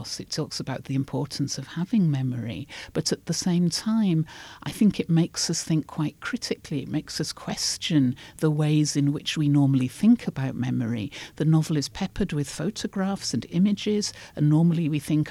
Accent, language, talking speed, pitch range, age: British, English, 180 wpm, 140-175 Hz, 50-69